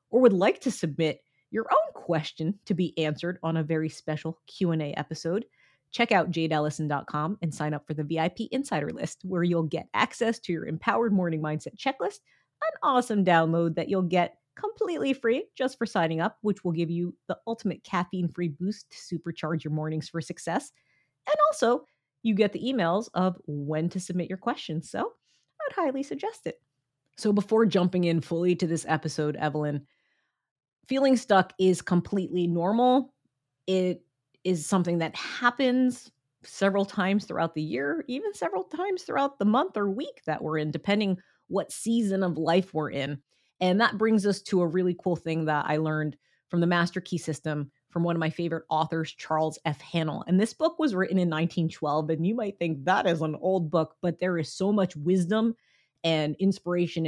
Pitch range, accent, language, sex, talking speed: 160-205 Hz, American, English, female, 180 wpm